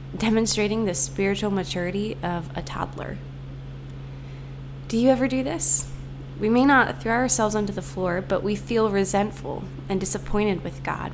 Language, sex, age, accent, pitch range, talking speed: English, female, 20-39, American, 135-200 Hz, 150 wpm